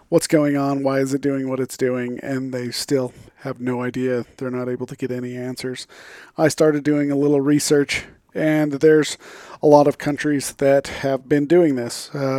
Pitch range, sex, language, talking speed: 130-150 Hz, male, English, 200 wpm